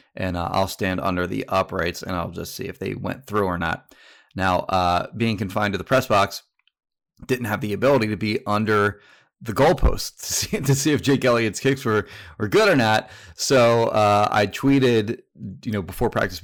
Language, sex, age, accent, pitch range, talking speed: English, male, 30-49, American, 100-125 Hz, 200 wpm